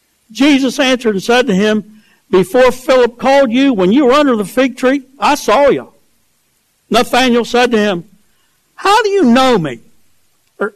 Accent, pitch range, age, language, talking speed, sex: American, 195-255 Hz, 60-79, English, 165 wpm, male